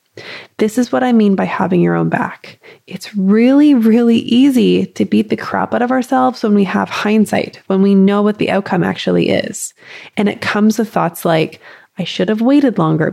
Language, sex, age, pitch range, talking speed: English, female, 20-39, 185-230 Hz, 200 wpm